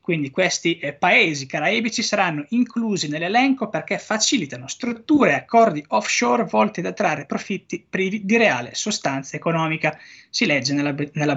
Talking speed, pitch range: 140 wpm, 150-205 Hz